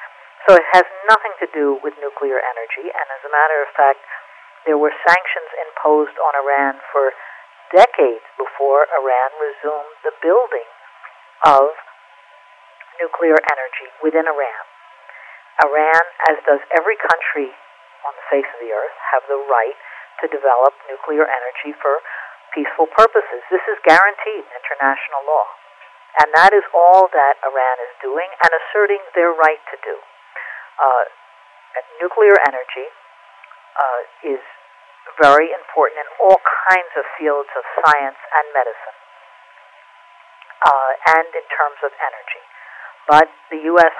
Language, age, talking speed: English, 50-69, 135 wpm